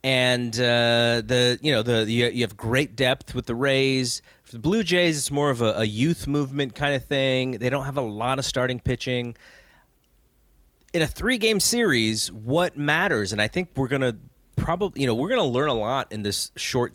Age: 30-49